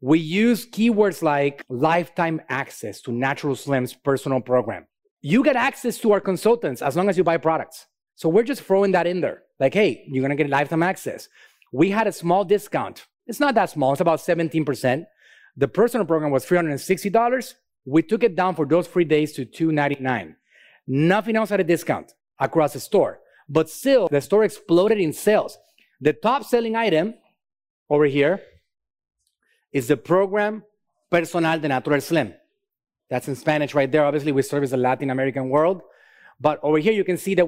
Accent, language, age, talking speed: Mexican, English, 30-49, 180 wpm